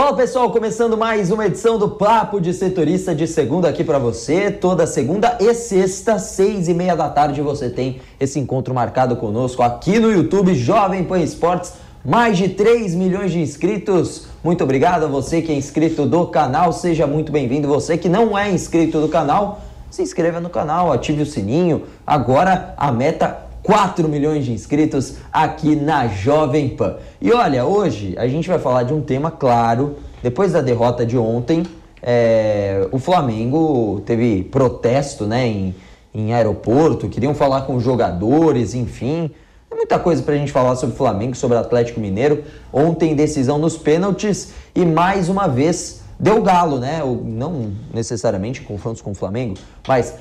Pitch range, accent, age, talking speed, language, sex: 125-180 Hz, Brazilian, 20-39, 170 wpm, English, male